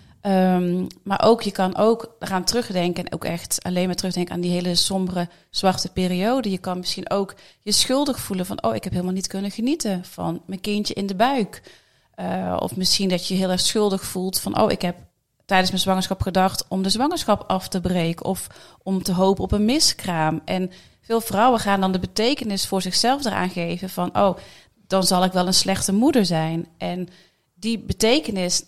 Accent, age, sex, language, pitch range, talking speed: Dutch, 30-49, female, Dutch, 180-215 Hz, 200 wpm